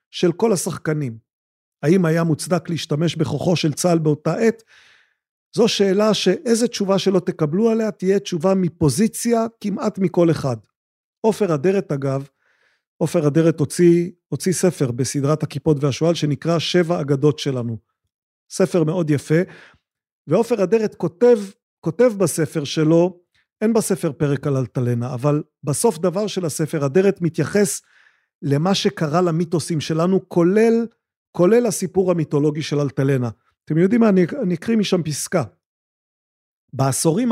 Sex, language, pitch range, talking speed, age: male, Hebrew, 150-190 Hz, 130 wpm, 40-59